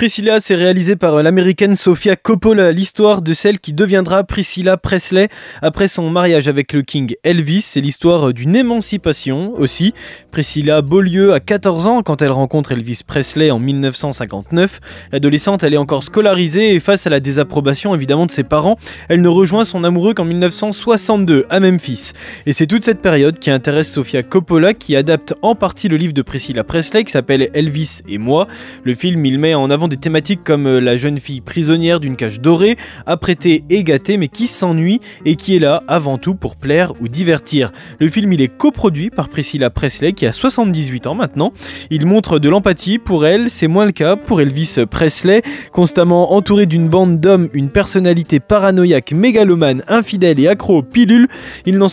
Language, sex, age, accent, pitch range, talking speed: French, male, 20-39, French, 145-195 Hz, 185 wpm